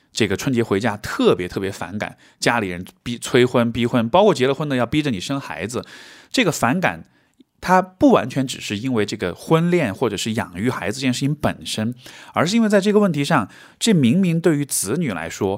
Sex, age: male, 20-39